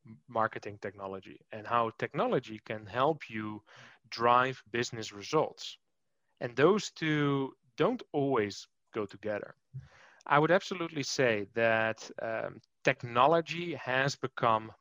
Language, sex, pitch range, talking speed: English, male, 110-135 Hz, 110 wpm